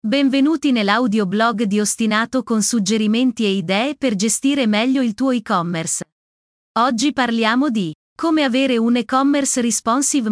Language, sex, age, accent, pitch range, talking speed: Italian, female, 30-49, native, 210-260 Hz, 130 wpm